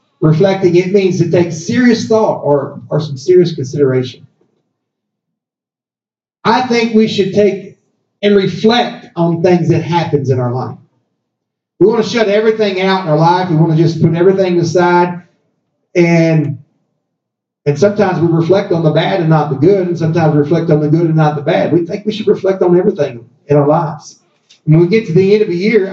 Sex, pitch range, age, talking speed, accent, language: male, 145-190 Hz, 40-59, 195 wpm, American, English